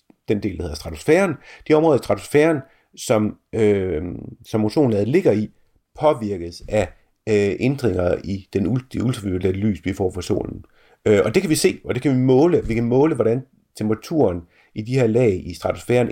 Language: Danish